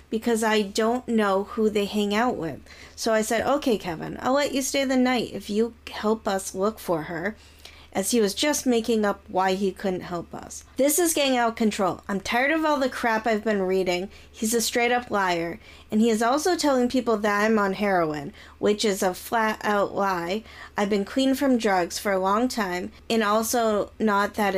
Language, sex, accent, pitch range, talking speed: English, female, American, 195-240 Hz, 205 wpm